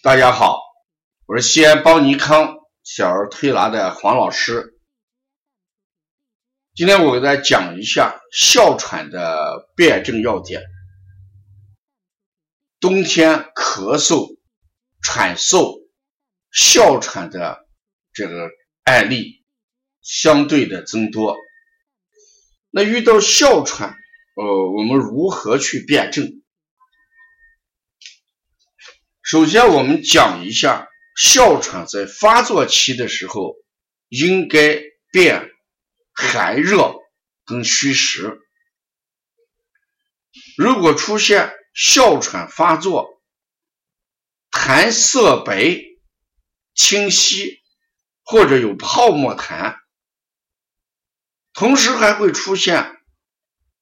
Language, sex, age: Chinese, male, 50-69